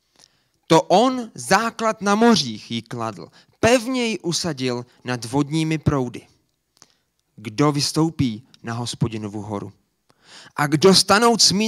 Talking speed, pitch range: 115 wpm, 130-205 Hz